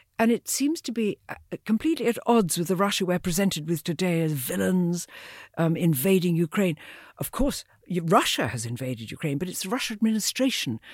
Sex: female